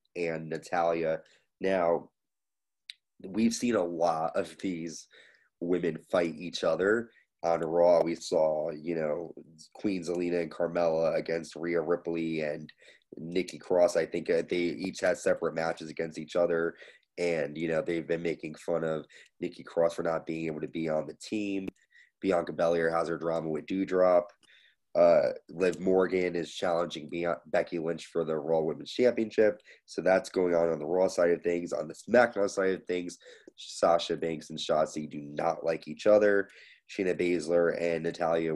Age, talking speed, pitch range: 20-39, 165 wpm, 80-90 Hz